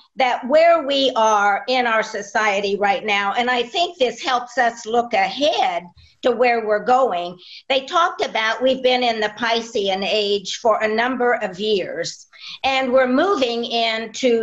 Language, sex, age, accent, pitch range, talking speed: English, female, 50-69, American, 220-270 Hz, 160 wpm